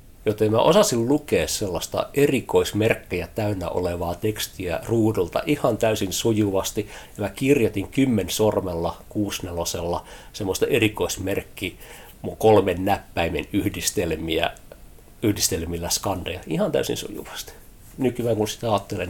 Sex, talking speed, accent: male, 105 wpm, native